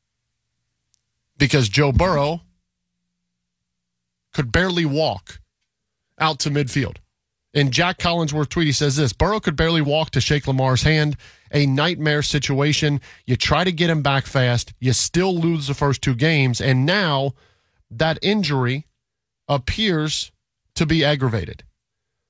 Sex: male